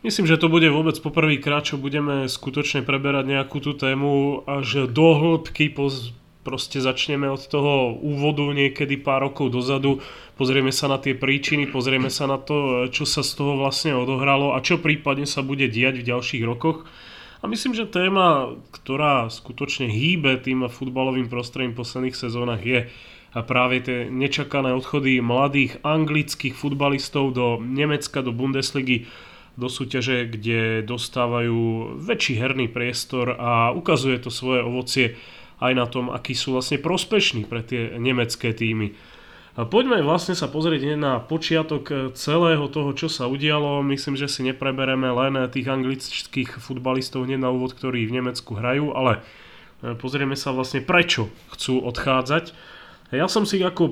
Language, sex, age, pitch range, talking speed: Slovak, male, 30-49, 125-145 Hz, 150 wpm